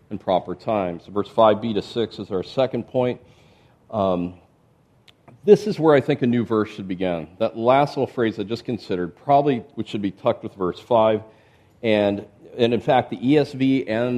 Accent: American